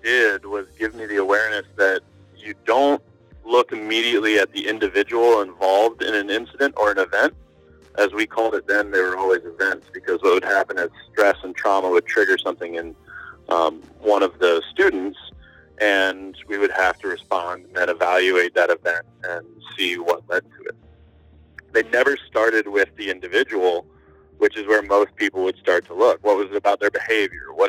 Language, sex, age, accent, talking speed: English, male, 30-49, American, 180 wpm